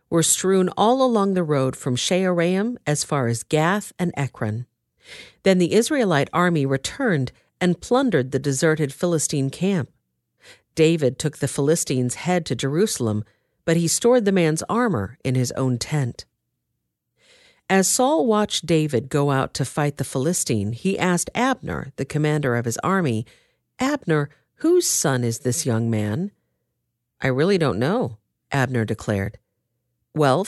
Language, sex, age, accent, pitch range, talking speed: English, female, 50-69, American, 125-190 Hz, 145 wpm